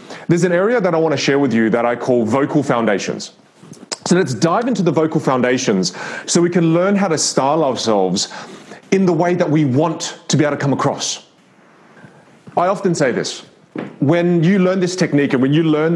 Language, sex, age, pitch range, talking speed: English, male, 30-49, 135-180 Hz, 205 wpm